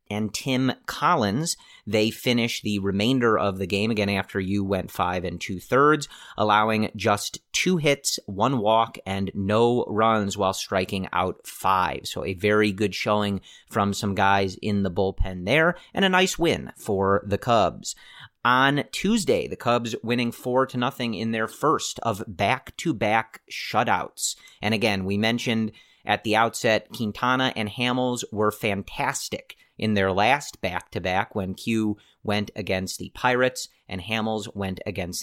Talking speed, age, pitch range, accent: 150 wpm, 30-49, 100-120 Hz, American